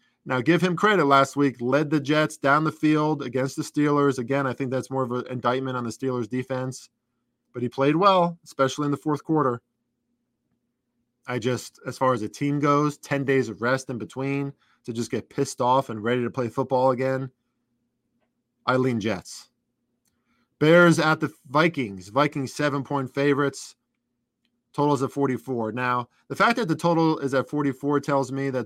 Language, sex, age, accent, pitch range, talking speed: English, male, 20-39, American, 120-140 Hz, 180 wpm